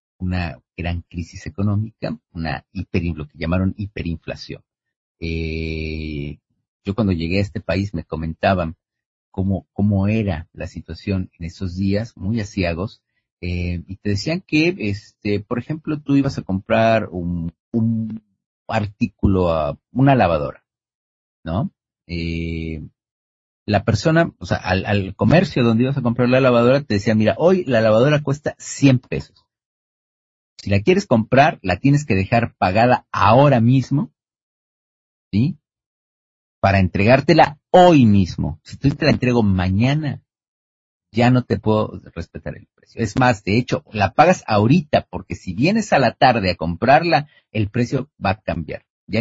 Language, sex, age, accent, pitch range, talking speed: Spanish, male, 40-59, Mexican, 90-125 Hz, 145 wpm